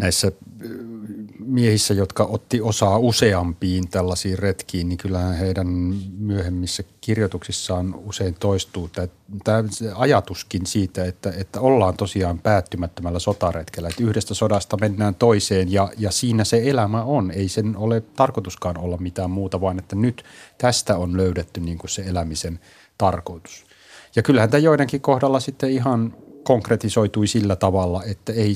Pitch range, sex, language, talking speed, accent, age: 90-110 Hz, male, Finnish, 130 wpm, native, 30-49